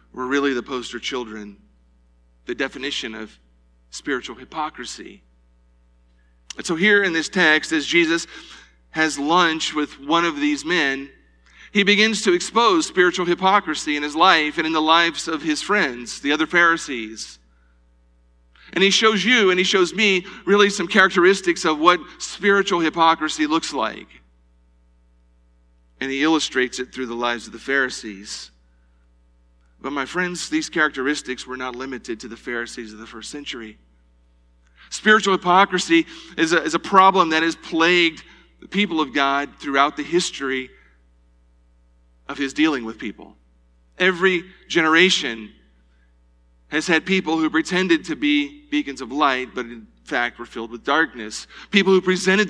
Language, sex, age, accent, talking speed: English, male, 40-59, American, 145 wpm